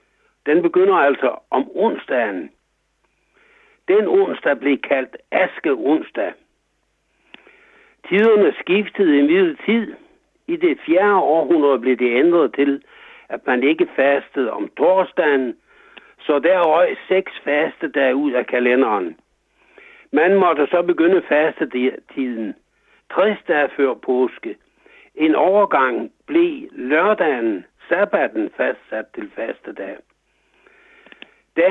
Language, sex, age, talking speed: Danish, male, 60-79, 100 wpm